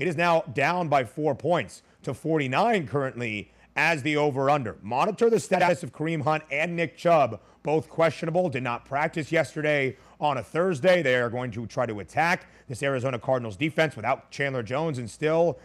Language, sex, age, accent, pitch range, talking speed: English, male, 30-49, American, 125-165 Hz, 180 wpm